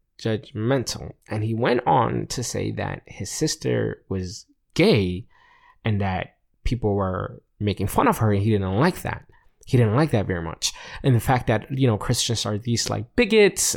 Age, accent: 20-39, American